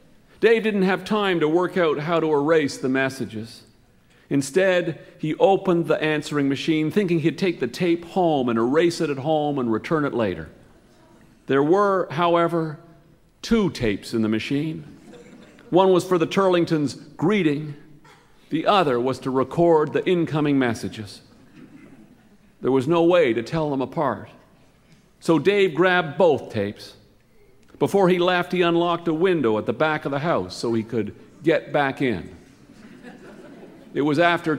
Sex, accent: male, American